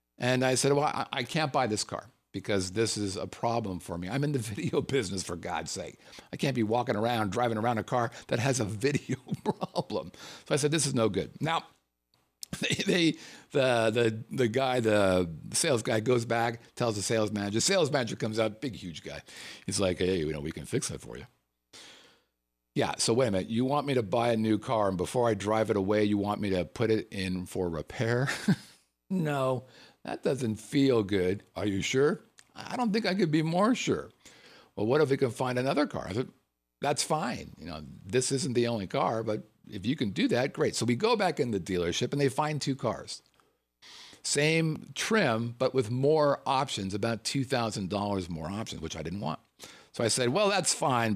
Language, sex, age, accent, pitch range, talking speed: English, male, 50-69, American, 100-135 Hz, 215 wpm